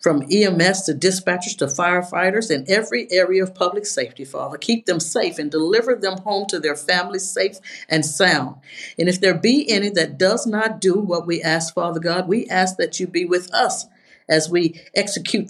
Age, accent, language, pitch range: 50-69, American, English, 155-185 Hz